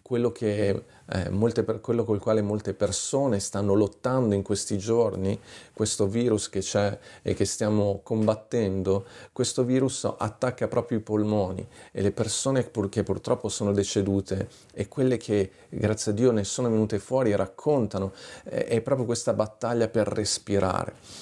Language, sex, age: Italian, male, 40-59